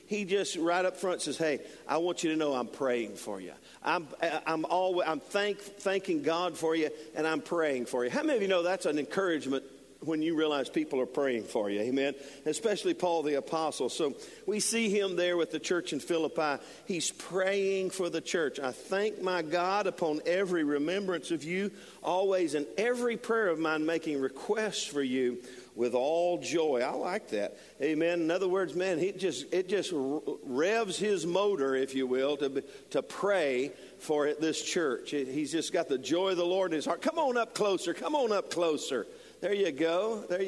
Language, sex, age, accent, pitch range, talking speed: English, male, 50-69, American, 145-195 Hz, 200 wpm